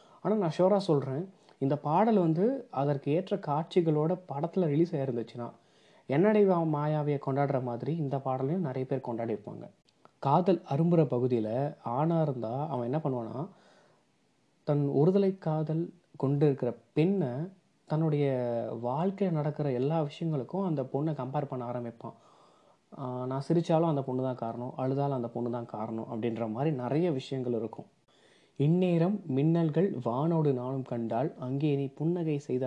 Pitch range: 125-165 Hz